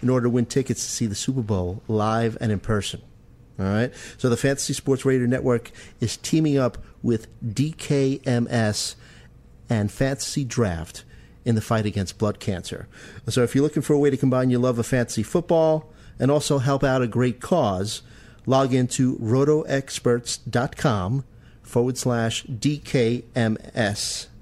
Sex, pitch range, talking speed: male, 110-130 Hz, 160 wpm